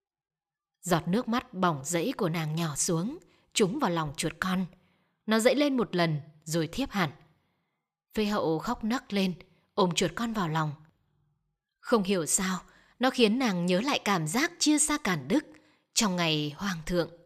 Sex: female